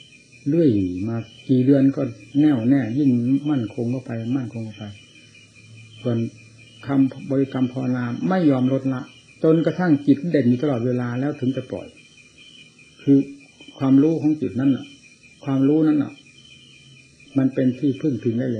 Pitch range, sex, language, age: 115-135 Hz, male, Thai, 60-79